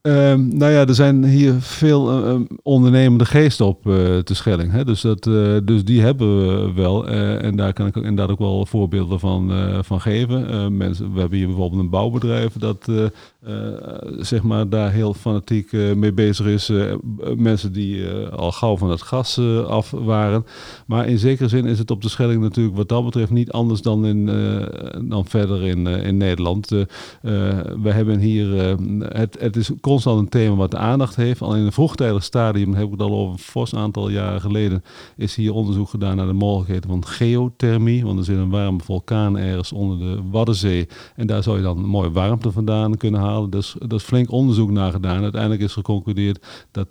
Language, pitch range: Dutch, 100-115 Hz